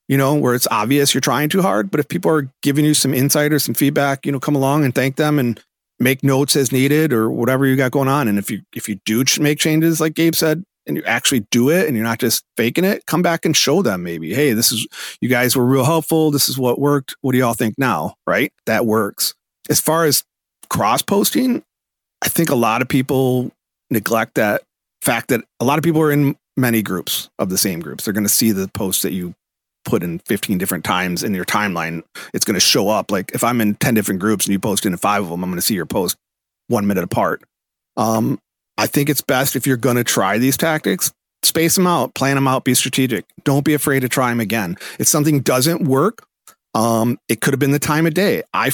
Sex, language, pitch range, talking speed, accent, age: male, English, 115-150 Hz, 245 wpm, American, 40-59